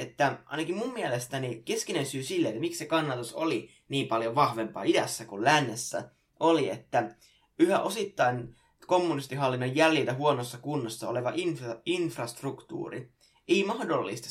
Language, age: English, 20-39